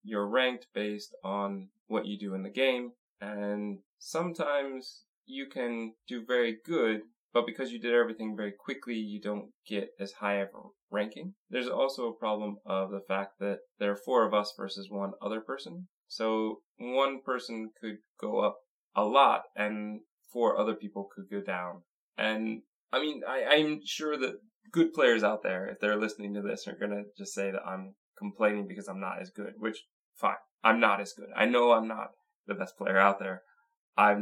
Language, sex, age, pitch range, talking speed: English, male, 20-39, 100-125 Hz, 190 wpm